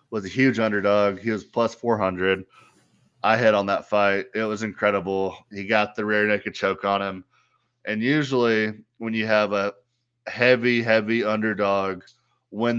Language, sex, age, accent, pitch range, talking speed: English, male, 20-39, American, 105-120 Hz, 160 wpm